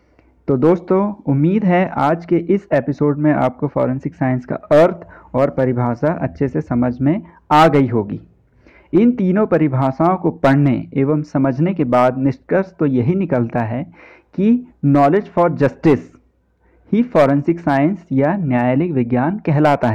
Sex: male